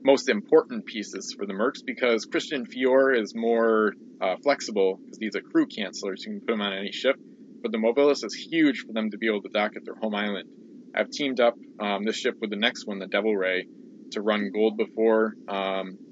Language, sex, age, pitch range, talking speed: English, male, 20-39, 100-115 Hz, 220 wpm